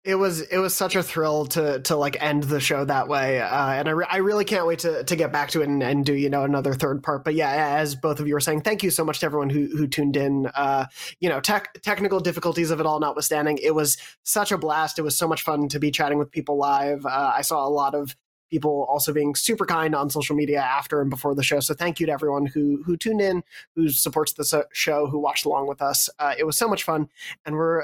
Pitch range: 145-175 Hz